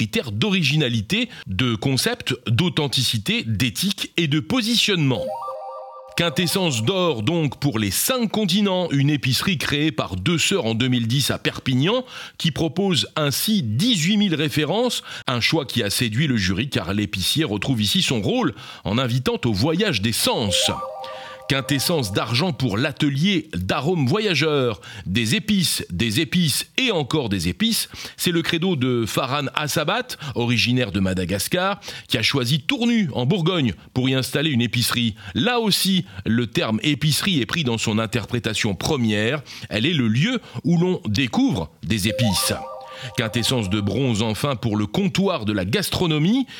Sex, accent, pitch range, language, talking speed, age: male, French, 115-165 Hz, French, 145 wpm, 40-59